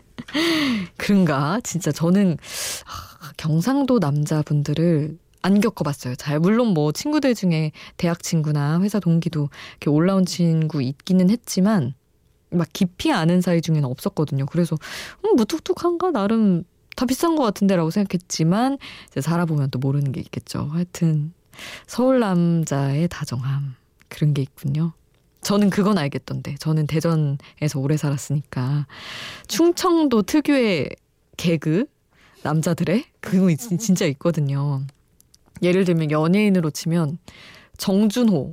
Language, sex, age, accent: Korean, female, 20-39, native